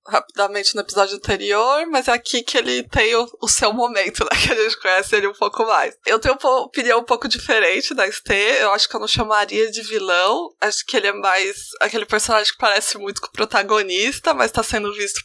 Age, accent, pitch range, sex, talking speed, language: 20-39, Brazilian, 220-325 Hz, female, 225 wpm, Portuguese